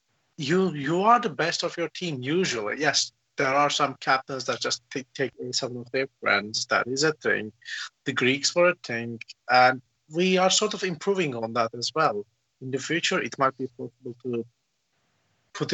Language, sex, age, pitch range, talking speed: English, male, 30-49, 125-165 Hz, 190 wpm